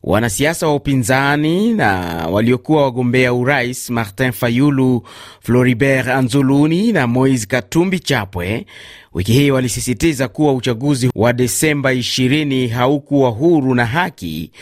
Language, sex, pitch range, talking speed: Swahili, male, 120-155 Hz, 105 wpm